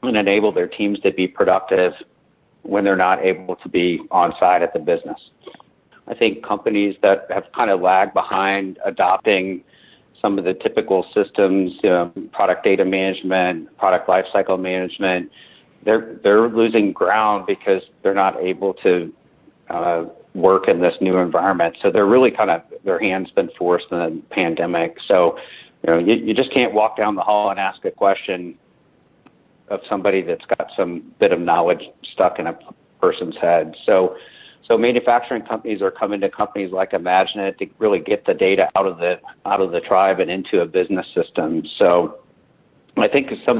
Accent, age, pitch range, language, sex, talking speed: American, 50-69, 95-115 Hz, English, male, 175 wpm